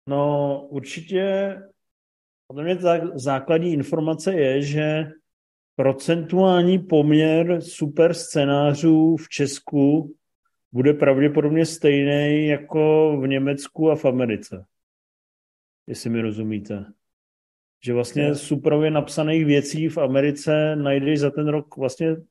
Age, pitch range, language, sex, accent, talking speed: 40-59, 125-155 Hz, Czech, male, native, 100 wpm